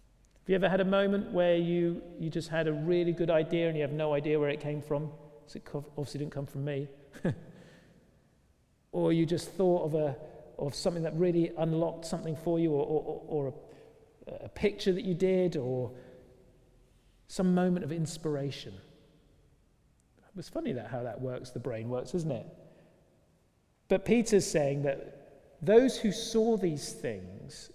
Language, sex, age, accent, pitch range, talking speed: English, male, 40-59, British, 145-190 Hz, 170 wpm